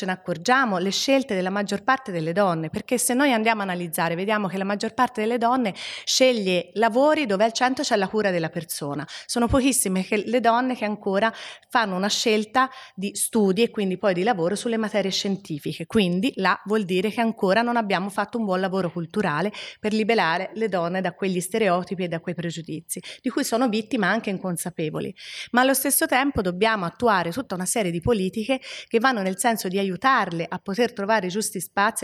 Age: 30-49